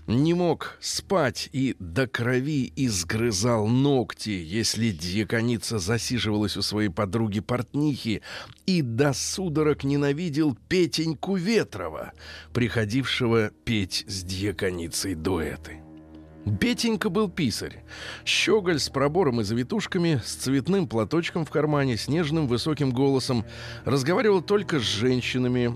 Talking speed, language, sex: 105 wpm, Russian, male